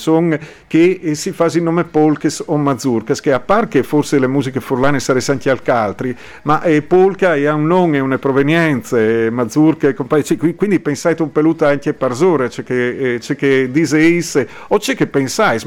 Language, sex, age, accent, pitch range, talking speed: English, male, 50-69, Italian, 140-170 Hz, 180 wpm